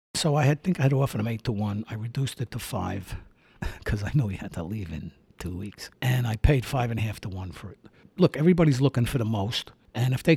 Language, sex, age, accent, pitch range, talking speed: English, male, 60-79, American, 110-150 Hz, 265 wpm